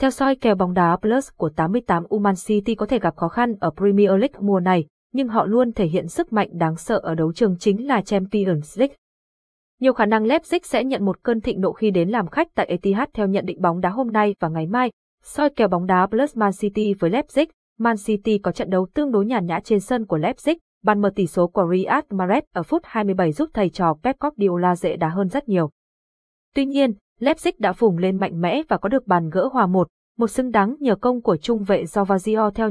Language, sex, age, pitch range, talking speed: Vietnamese, female, 20-39, 185-235 Hz, 235 wpm